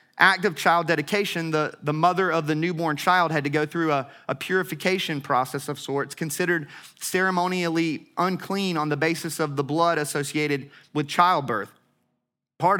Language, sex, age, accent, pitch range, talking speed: English, male, 30-49, American, 150-180 Hz, 160 wpm